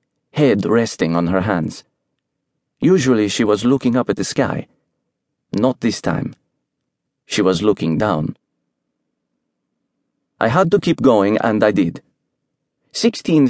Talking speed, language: 130 wpm, English